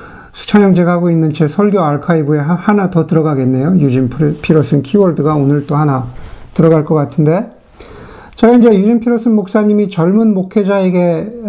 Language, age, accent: Korean, 50-69, native